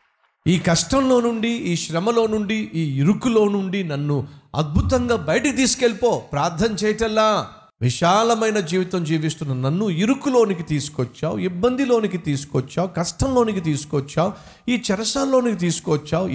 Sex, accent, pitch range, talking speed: male, native, 120-195 Hz, 105 wpm